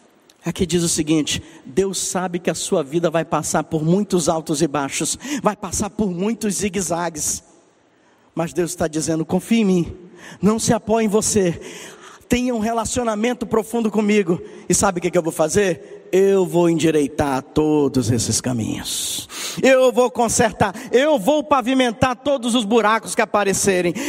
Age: 50-69